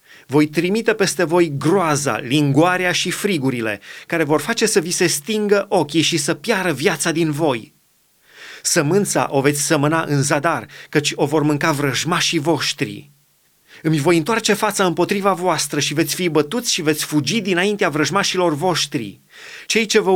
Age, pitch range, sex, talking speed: 30-49, 150-200 Hz, male, 160 wpm